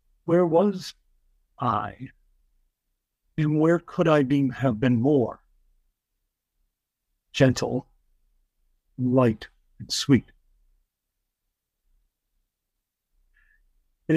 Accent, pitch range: American, 90-145 Hz